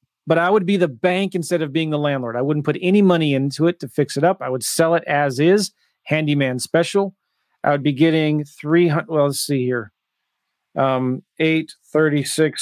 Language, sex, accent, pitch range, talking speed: English, male, American, 135-160 Hz, 195 wpm